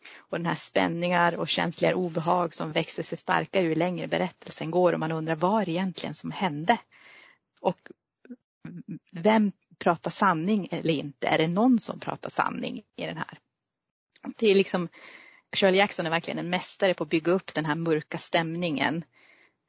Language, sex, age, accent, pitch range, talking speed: Swedish, female, 30-49, native, 165-215 Hz, 165 wpm